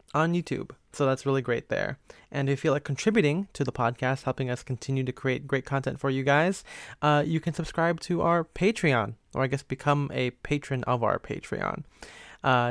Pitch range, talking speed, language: 130-150 Hz, 200 wpm, English